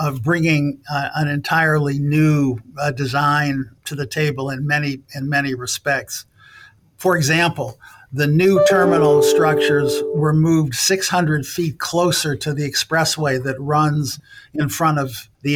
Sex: male